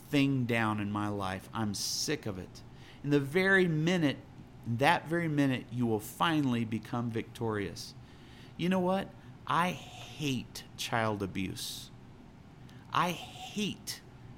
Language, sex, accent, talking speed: English, male, American, 125 wpm